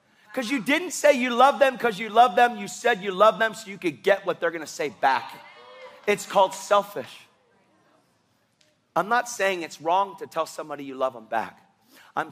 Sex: male